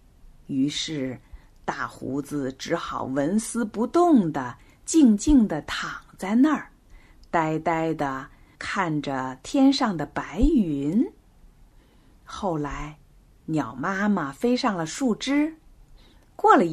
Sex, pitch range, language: female, 155-245 Hz, Chinese